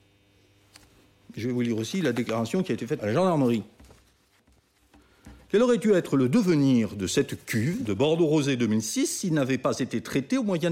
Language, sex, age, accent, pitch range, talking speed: French, male, 60-79, French, 100-160 Hz, 190 wpm